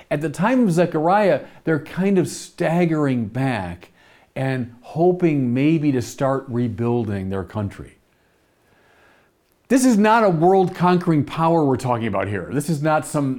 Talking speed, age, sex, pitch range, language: 145 wpm, 50-69, male, 115-170 Hz, English